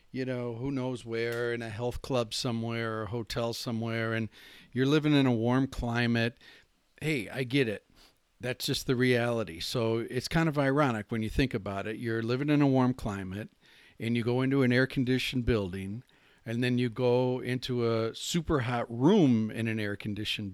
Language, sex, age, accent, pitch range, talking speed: English, male, 50-69, American, 115-130 Hz, 185 wpm